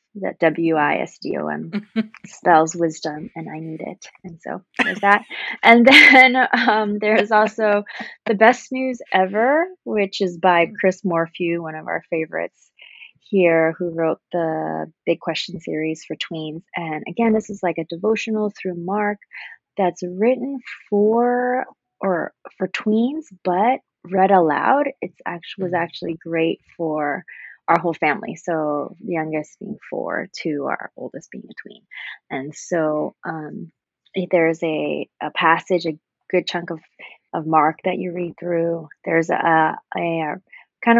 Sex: female